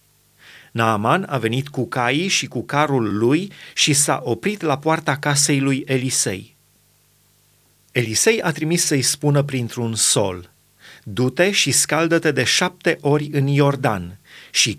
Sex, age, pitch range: male, 30-49, 130-165 Hz